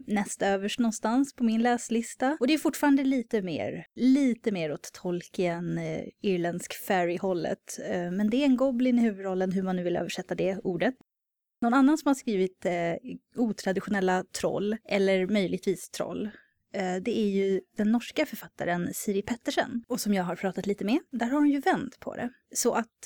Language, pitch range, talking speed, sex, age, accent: Swedish, 185-240 Hz, 180 wpm, female, 20-39, native